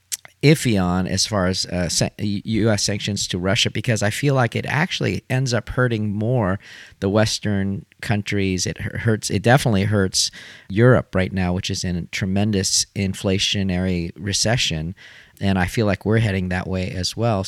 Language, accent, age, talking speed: English, American, 40-59, 165 wpm